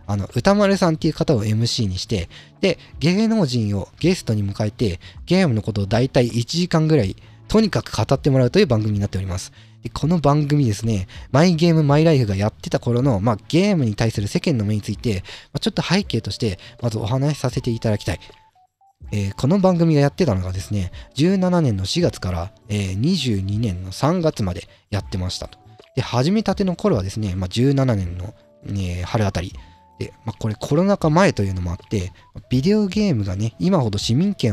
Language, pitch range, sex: Japanese, 100-155 Hz, male